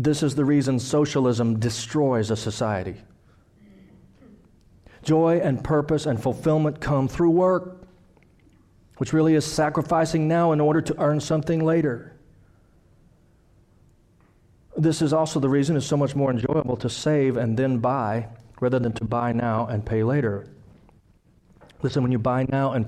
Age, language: 40-59, English